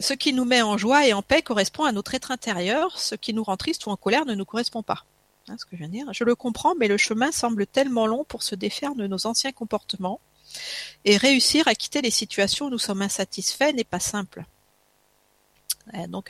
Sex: female